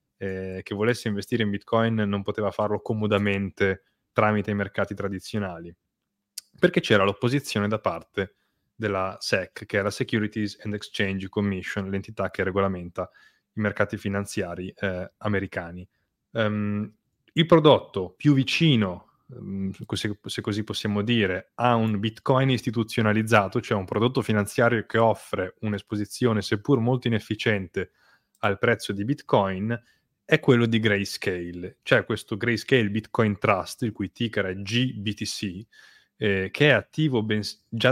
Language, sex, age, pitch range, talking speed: Italian, male, 20-39, 95-115 Hz, 135 wpm